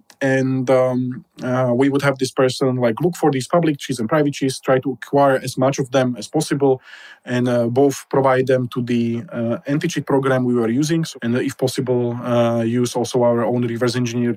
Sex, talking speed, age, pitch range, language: male, 210 wpm, 20-39, 120-140 Hz, English